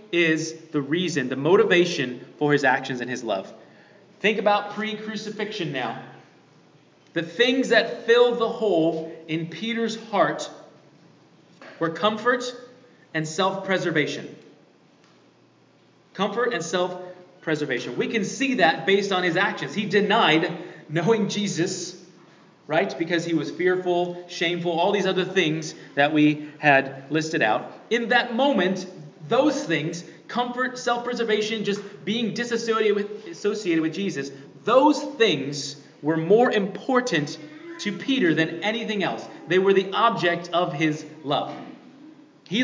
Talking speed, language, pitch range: 130 wpm, English, 160-220 Hz